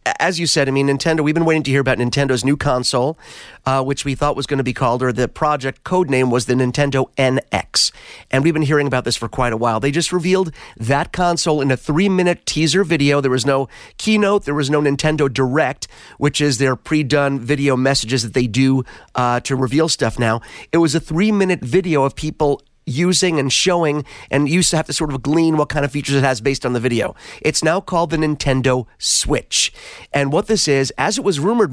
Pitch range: 135-160 Hz